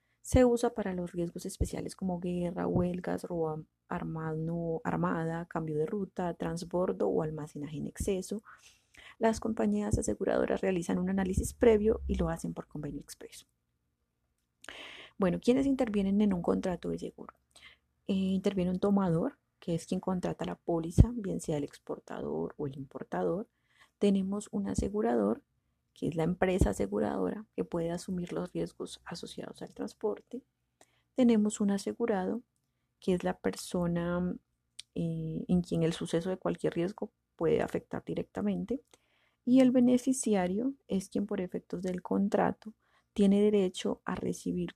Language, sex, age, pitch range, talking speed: Spanish, female, 30-49, 165-210 Hz, 140 wpm